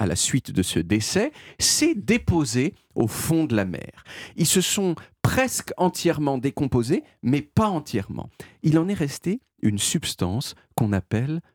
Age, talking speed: 40-59, 155 wpm